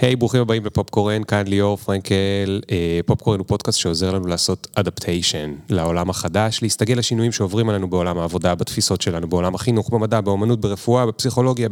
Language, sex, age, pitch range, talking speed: Hebrew, male, 30-49, 90-120 Hz, 160 wpm